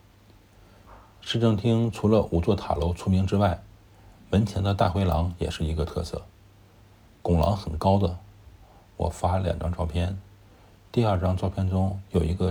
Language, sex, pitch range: Chinese, male, 90-100 Hz